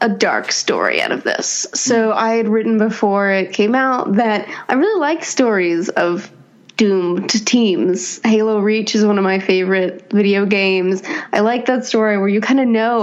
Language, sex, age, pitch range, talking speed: English, female, 20-39, 200-235 Hz, 185 wpm